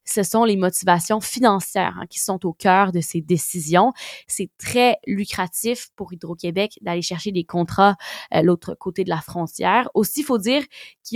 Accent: Canadian